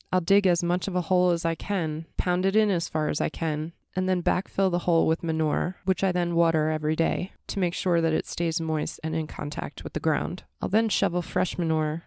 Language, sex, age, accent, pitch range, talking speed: English, female, 20-39, American, 155-185 Hz, 245 wpm